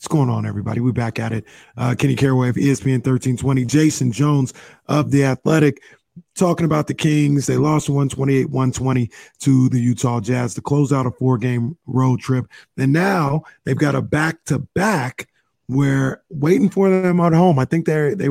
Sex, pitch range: male, 125-150 Hz